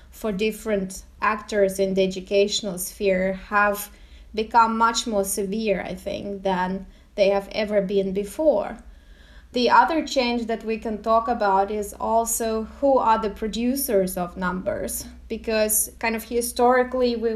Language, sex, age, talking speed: English, female, 20-39, 140 wpm